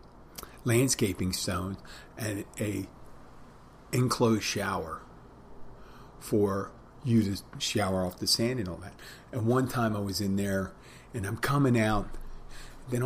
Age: 40-59